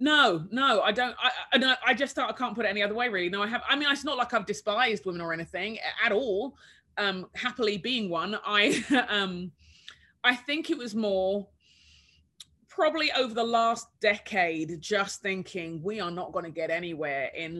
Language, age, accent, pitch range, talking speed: English, 20-39, British, 170-225 Hz, 190 wpm